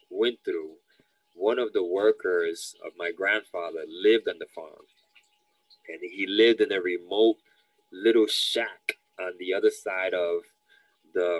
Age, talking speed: 20-39, 140 wpm